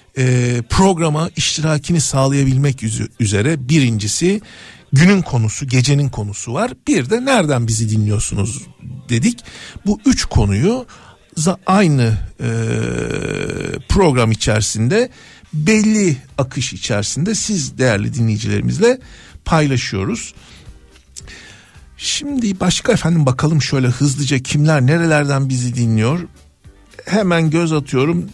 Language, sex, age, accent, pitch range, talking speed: Turkish, male, 60-79, native, 115-160 Hz, 95 wpm